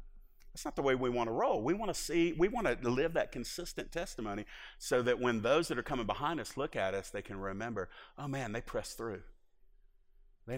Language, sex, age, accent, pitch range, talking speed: English, male, 50-69, American, 105-150 Hz, 225 wpm